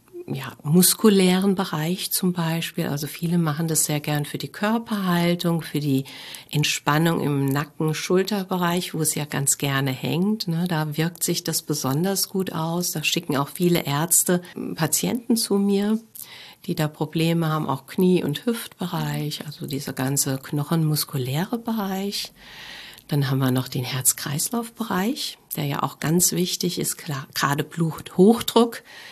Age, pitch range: 50-69, 150-195 Hz